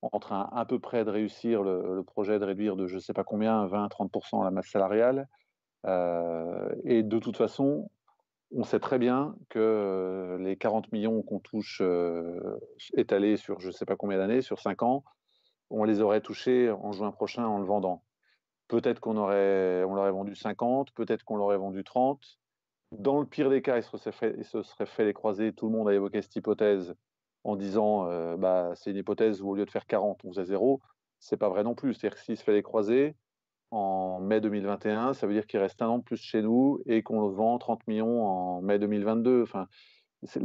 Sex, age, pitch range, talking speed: male, 30-49, 100-115 Hz, 215 wpm